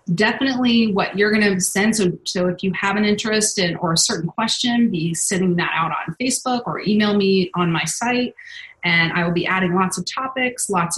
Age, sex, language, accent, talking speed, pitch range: 30-49, female, English, American, 220 wpm, 180-230 Hz